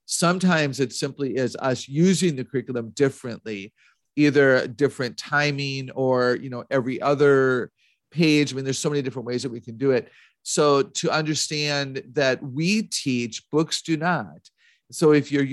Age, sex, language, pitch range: 40-59, male, English, 125-155 Hz